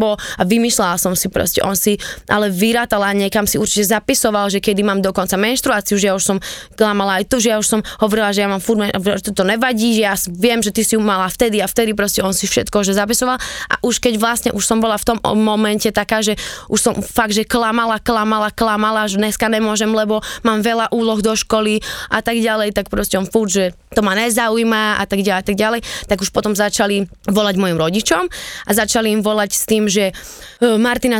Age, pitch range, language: 20-39, 205-240 Hz, Slovak